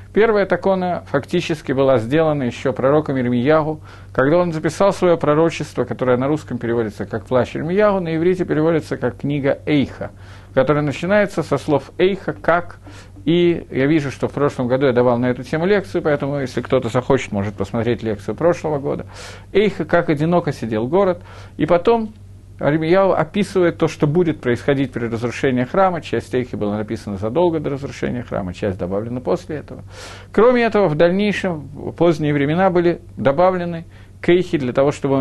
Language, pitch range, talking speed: Russian, 120-170 Hz, 160 wpm